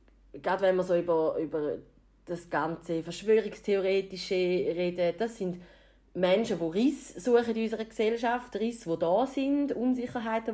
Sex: female